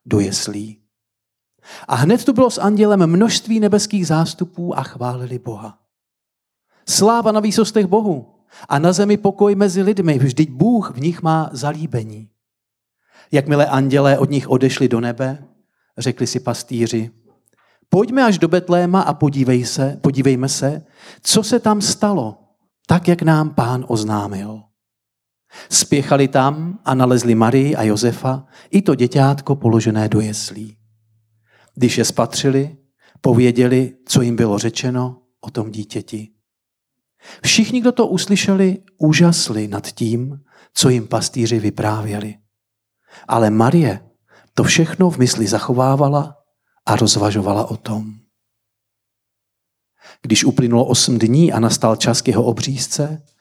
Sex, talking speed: male, 130 wpm